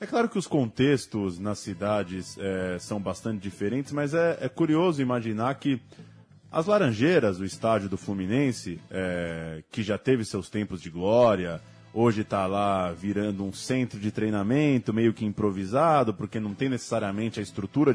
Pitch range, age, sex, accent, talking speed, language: 100-140 Hz, 20-39, male, Brazilian, 155 wpm, Portuguese